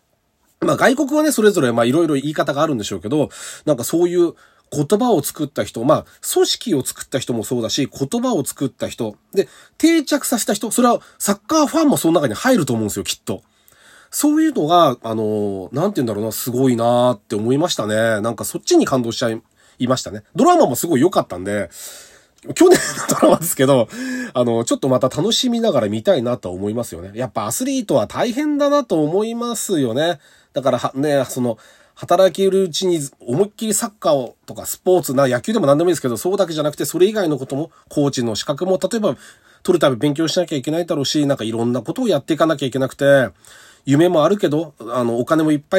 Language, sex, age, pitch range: Japanese, male, 30-49, 120-200 Hz